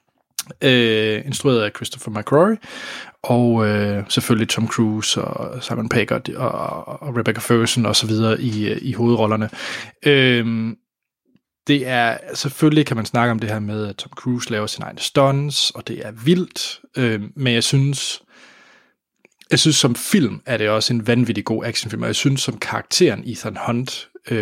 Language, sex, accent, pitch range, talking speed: Danish, male, native, 115-140 Hz, 165 wpm